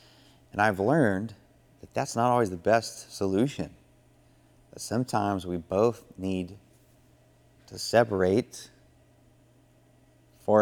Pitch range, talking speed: 90-115 Hz, 100 wpm